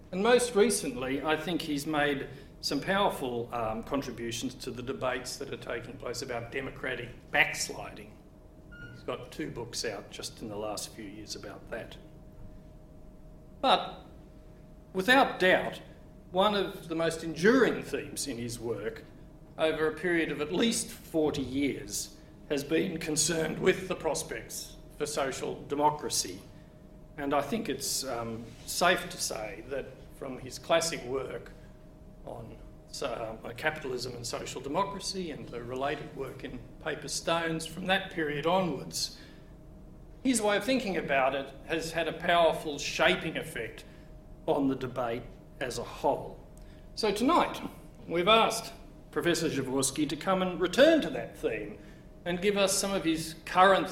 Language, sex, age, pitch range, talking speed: English, male, 50-69, 140-185 Hz, 145 wpm